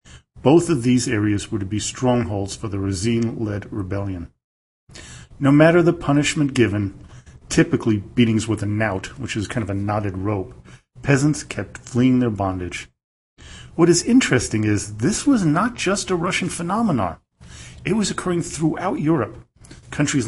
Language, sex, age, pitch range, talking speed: English, male, 40-59, 105-130 Hz, 150 wpm